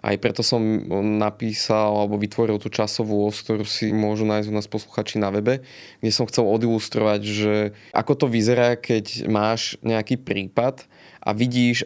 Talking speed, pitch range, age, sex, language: 160 wpm, 105-120 Hz, 20-39, male, Slovak